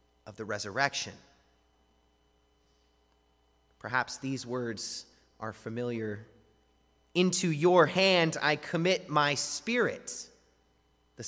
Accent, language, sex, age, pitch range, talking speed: American, English, male, 30-49, 165-225 Hz, 85 wpm